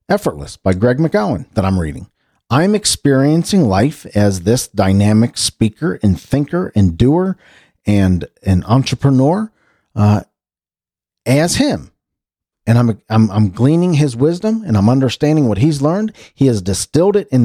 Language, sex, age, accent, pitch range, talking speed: English, male, 40-59, American, 100-165 Hz, 145 wpm